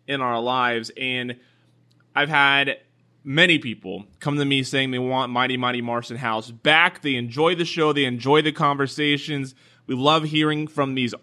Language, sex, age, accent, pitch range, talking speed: English, male, 20-39, American, 120-150 Hz, 170 wpm